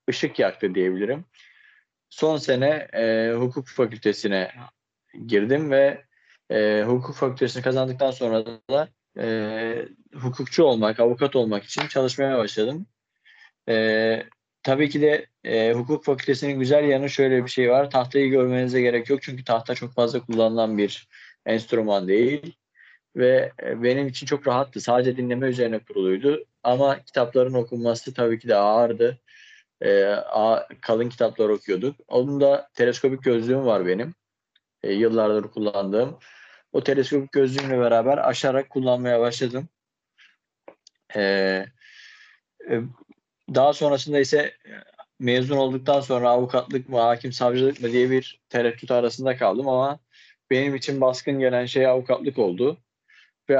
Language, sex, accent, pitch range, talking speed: Turkish, male, native, 115-140 Hz, 125 wpm